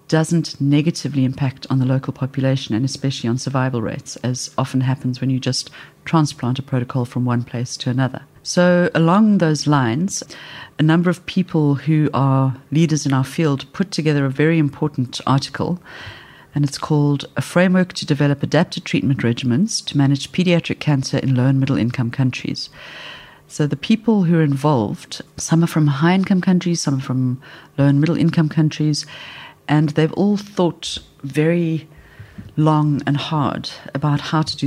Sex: female